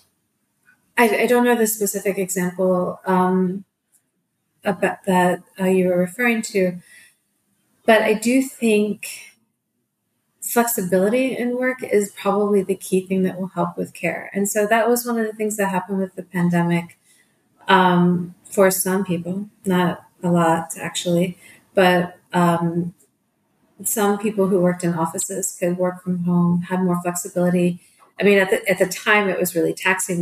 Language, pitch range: English, 175-200 Hz